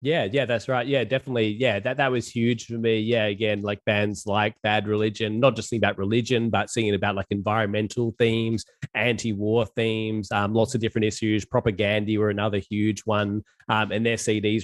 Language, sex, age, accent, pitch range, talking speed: English, male, 20-39, Australian, 105-115 Hz, 190 wpm